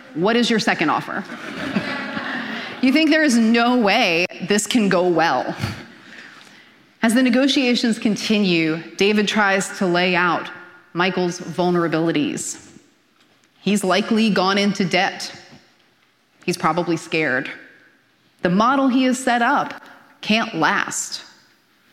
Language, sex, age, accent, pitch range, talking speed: English, female, 30-49, American, 175-240 Hz, 115 wpm